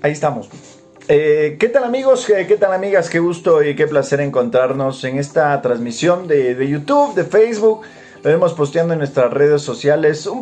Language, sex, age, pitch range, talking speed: Spanish, male, 30-49, 135-200 Hz, 180 wpm